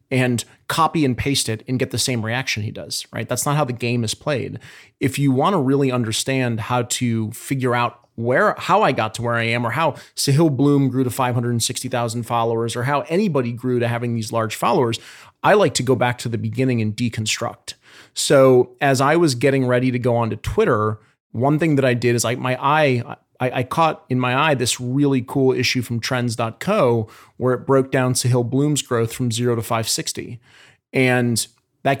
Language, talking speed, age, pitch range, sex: English, 205 wpm, 30-49, 120-140 Hz, male